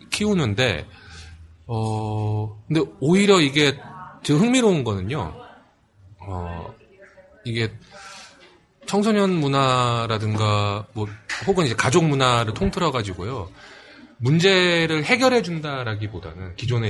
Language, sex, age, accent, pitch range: Korean, male, 30-49, native, 100-150 Hz